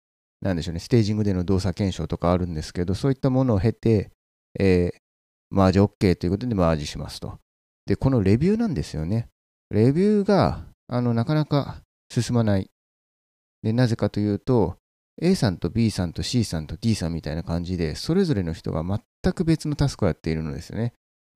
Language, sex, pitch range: Japanese, male, 85-125 Hz